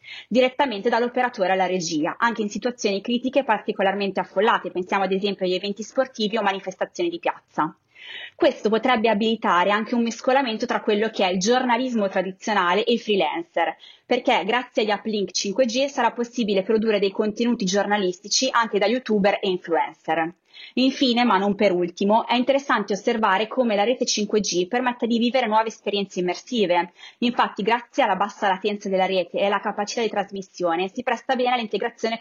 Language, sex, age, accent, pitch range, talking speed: Italian, female, 20-39, native, 190-235 Hz, 160 wpm